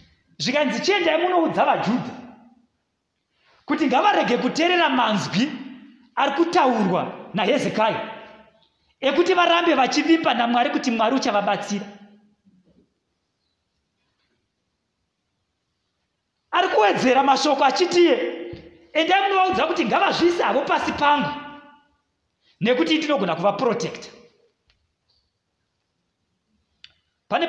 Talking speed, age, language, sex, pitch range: 85 wpm, 40-59, English, male, 205-295 Hz